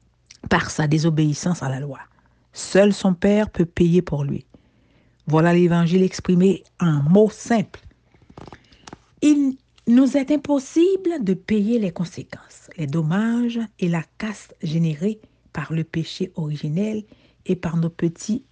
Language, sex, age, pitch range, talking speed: French, female, 60-79, 160-215 Hz, 135 wpm